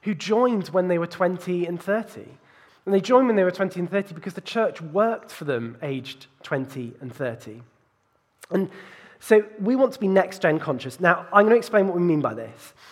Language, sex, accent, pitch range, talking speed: English, male, British, 135-190 Hz, 210 wpm